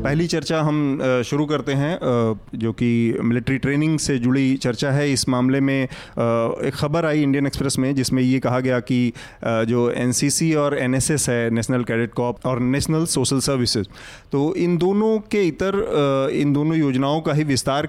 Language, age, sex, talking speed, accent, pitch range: Hindi, 30-49, male, 170 wpm, native, 120-145 Hz